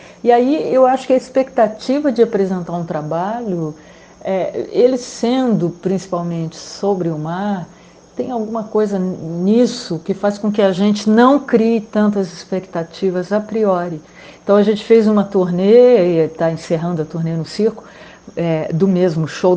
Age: 50-69